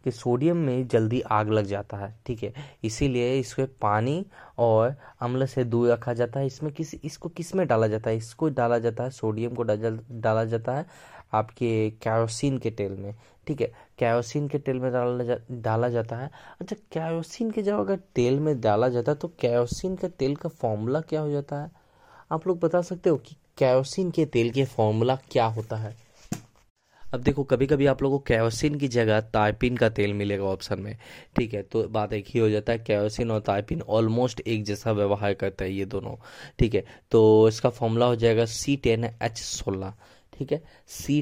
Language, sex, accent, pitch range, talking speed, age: Hindi, male, native, 110-140 Hz, 190 wpm, 20-39